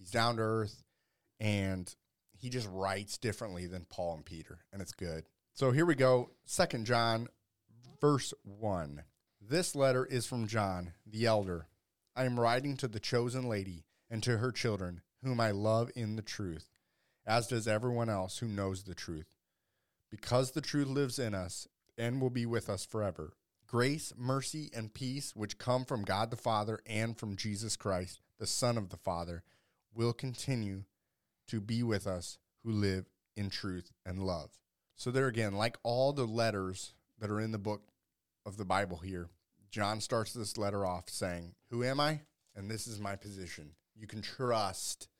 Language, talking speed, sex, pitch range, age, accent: English, 175 wpm, male, 95-120 Hz, 30-49, American